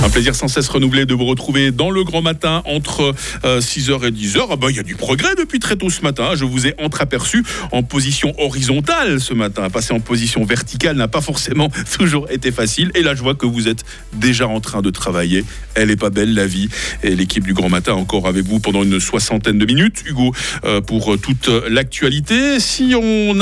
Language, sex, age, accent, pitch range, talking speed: French, male, 40-59, French, 110-155 Hz, 215 wpm